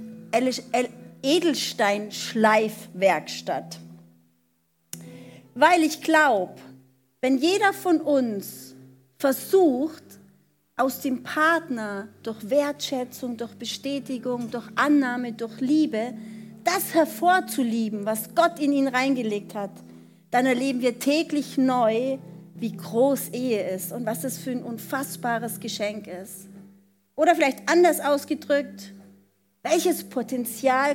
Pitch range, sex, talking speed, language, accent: 210-275 Hz, female, 100 wpm, German, German